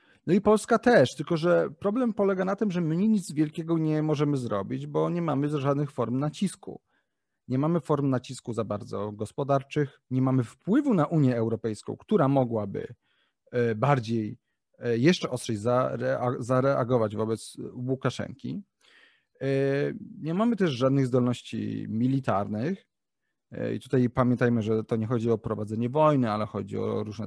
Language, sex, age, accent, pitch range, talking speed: Polish, male, 40-59, native, 110-145 Hz, 140 wpm